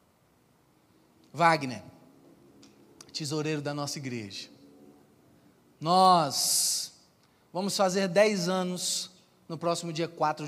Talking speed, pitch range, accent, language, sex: 80 wpm, 140-190 Hz, Brazilian, Portuguese, male